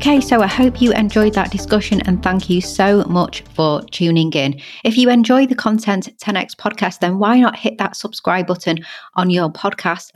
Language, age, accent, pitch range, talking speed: English, 30-49, British, 165-215 Hz, 195 wpm